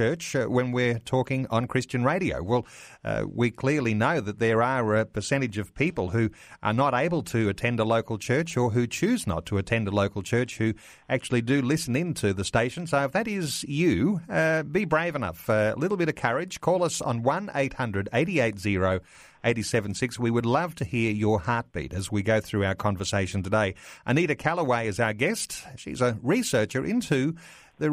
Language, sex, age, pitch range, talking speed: English, male, 40-59, 110-140 Hz, 190 wpm